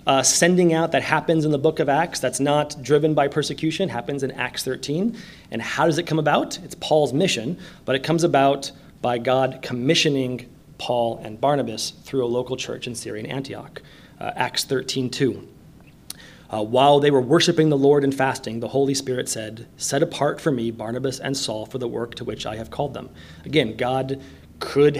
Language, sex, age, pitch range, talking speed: English, male, 30-49, 130-155 Hz, 195 wpm